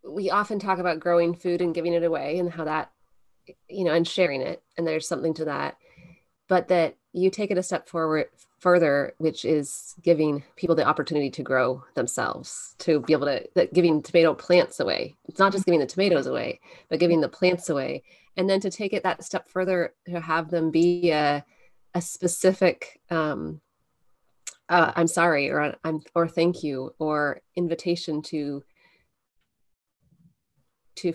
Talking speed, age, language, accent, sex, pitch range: 170 wpm, 30-49, English, American, female, 155-180 Hz